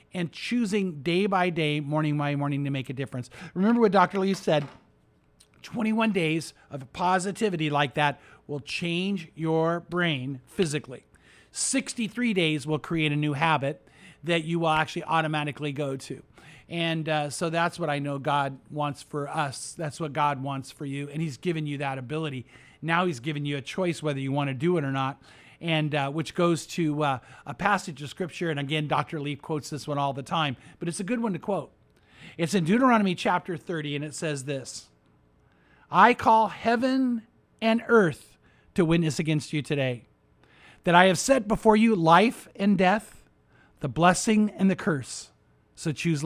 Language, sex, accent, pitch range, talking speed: English, male, American, 145-180 Hz, 185 wpm